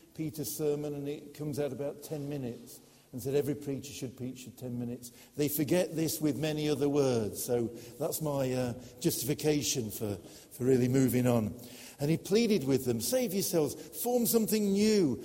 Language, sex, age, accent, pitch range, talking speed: English, male, 50-69, British, 120-160 Hz, 175 wpm